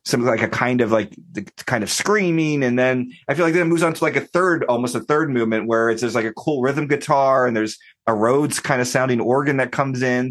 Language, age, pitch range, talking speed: English, 30-49, 110-140 Hz, 270 wpm